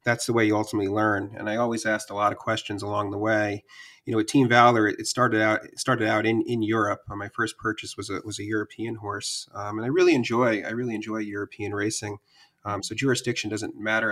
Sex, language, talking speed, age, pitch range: male, English, 235 wpm, 30-49, 105-115 Hz